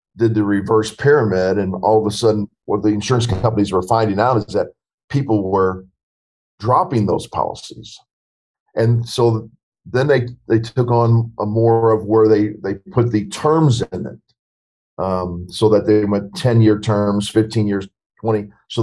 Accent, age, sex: American, 40-59, male